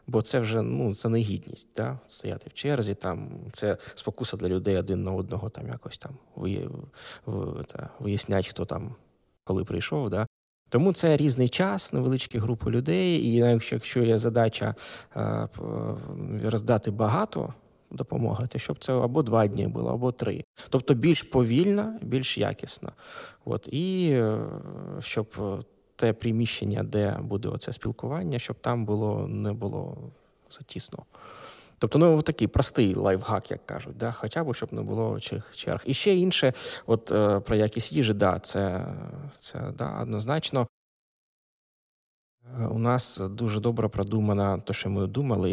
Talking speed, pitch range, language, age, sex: 145 wpm, 105-135 Hz, Ukrainian, 20-39, male